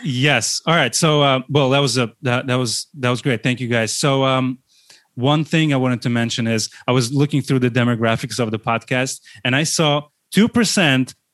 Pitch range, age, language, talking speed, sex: 120-145 Hz, 30-49, English, 215 wpm, male